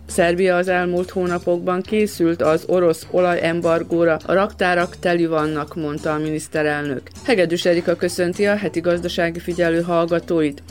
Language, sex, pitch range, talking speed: Hungarian, female, 160-180 Hz, 135 wpm